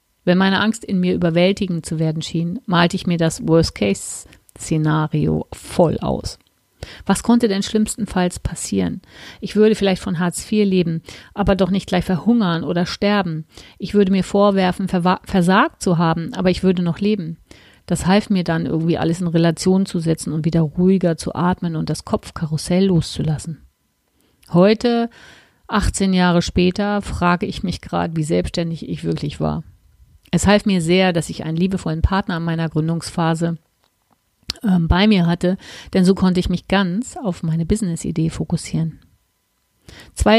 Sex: female